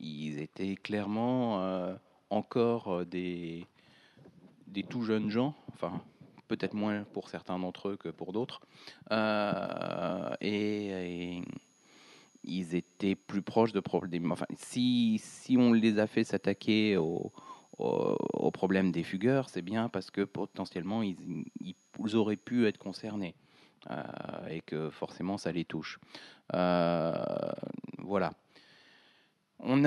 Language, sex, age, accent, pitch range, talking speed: French, male, 30-49, French, 85-105 Hz, 125 wpm